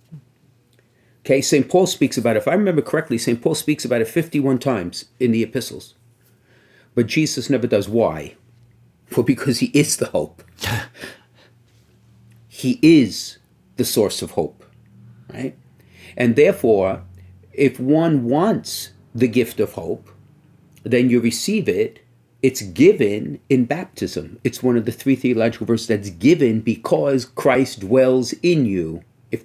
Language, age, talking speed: English, 50-69, 145 wpm